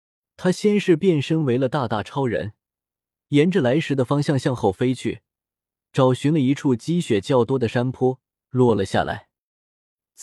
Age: 20-39